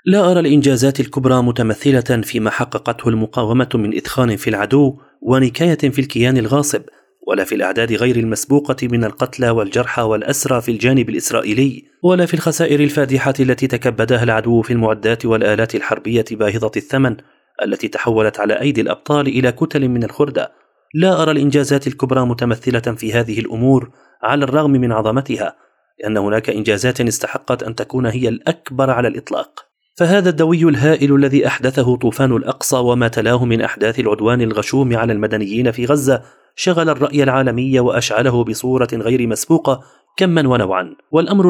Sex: male